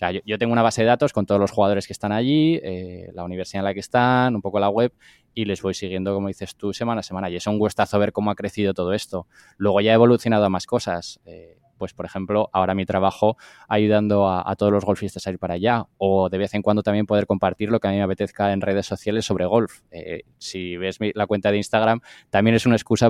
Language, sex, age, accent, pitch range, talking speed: English, male, 20-39, Spanish, 95-115 Hz, 260 wpm